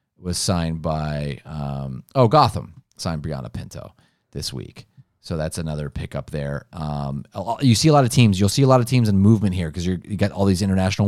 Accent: American